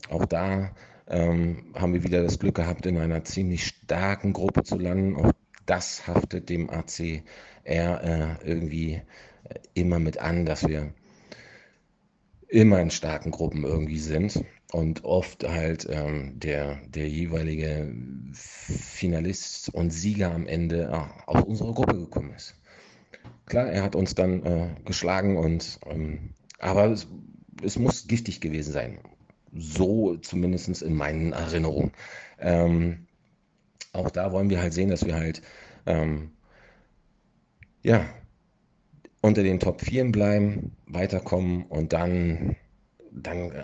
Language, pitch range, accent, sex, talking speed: German, 80-95 Hz, German, male, 130 wpm